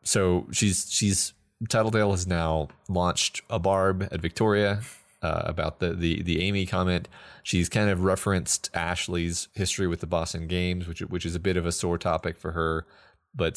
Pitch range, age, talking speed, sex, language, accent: 85-100 Hz, 30-49, 175 wpm, male, English, American